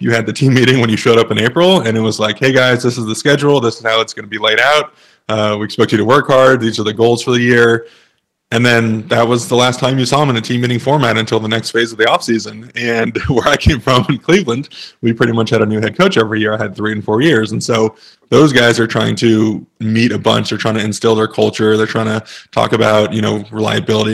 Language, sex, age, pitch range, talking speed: English, male, 20-39, 110-125 Hz, 285 wpm